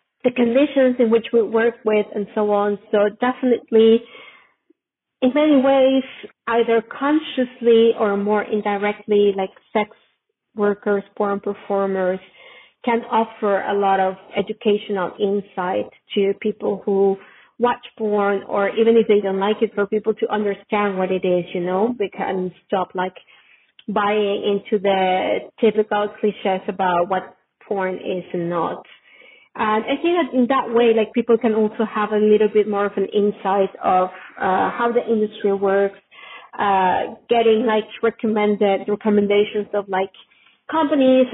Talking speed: 145 wpm